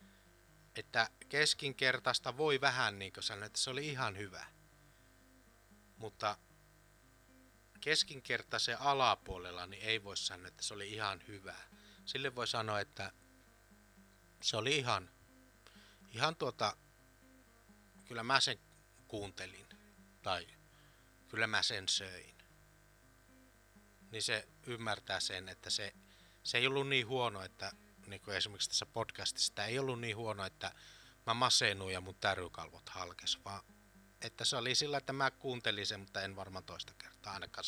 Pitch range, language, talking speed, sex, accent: 95-120 Hz, Finnish, 135 wpm, male, native